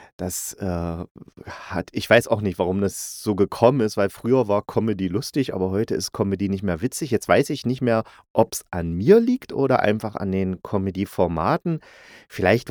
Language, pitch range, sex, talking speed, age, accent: German, 95-140 Hz, male, 190 wpm, 30-49, German